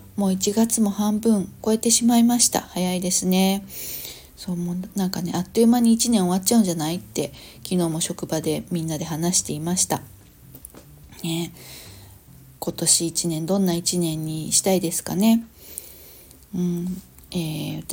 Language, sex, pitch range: Japanese, female, 165-210 Hz